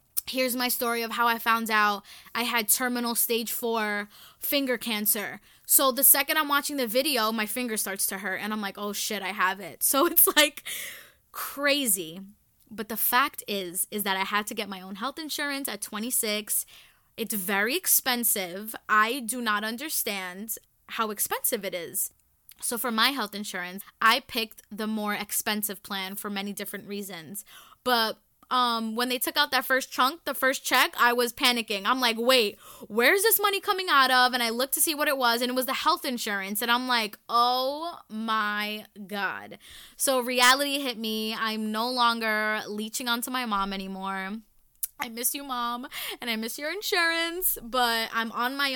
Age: 20-39